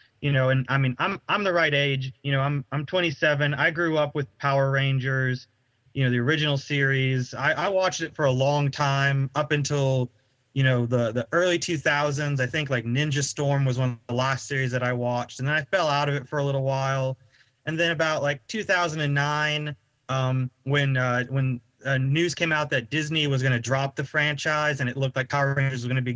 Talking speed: 225 wpm